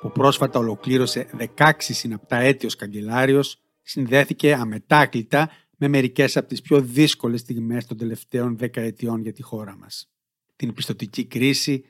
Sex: male